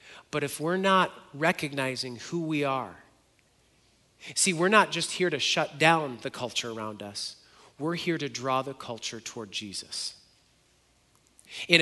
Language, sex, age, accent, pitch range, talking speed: English, male, 40-59, American, 130-175 Hz, 145 wpm